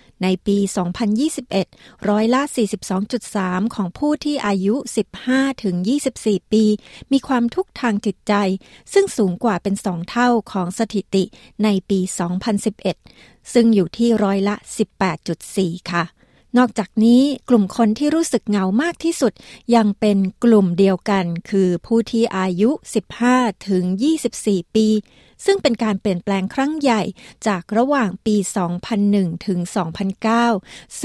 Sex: female